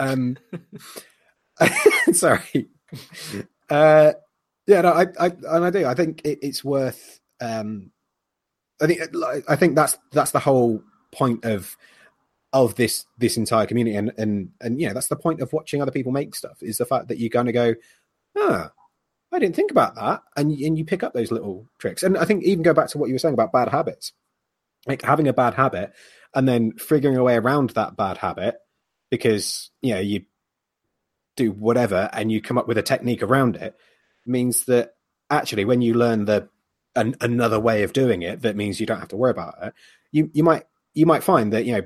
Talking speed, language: 205 wpm, English